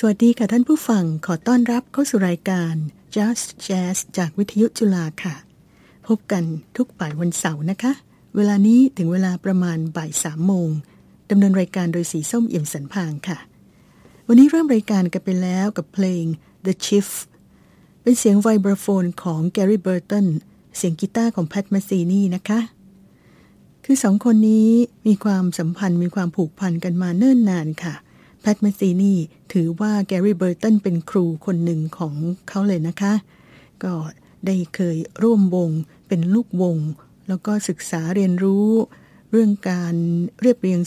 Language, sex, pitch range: Thai, female, 175-205 Hz